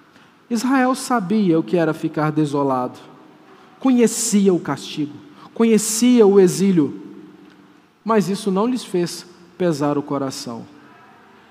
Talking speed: 110 wpm